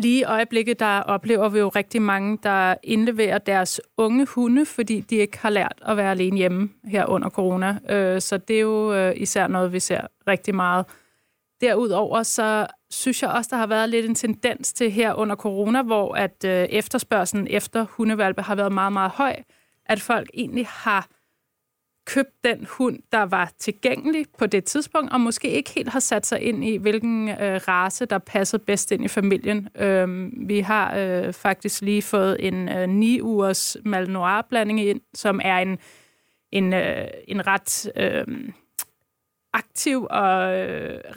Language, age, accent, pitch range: Danish, 30-49, native, 195-235 Hz